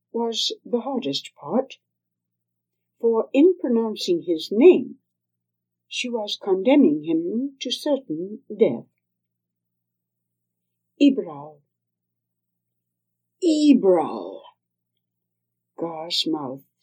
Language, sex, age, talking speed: English, female, 60-79, 70 wpm